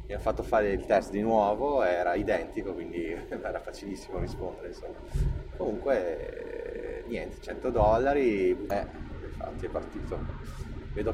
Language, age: Italian, 30-49